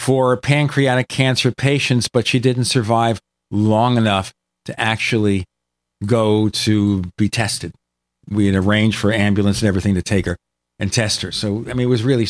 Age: 50-69